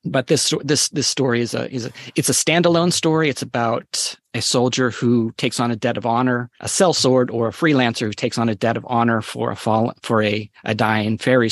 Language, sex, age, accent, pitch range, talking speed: English, male, 30-49, American, 115-130 Hz, 230 wpm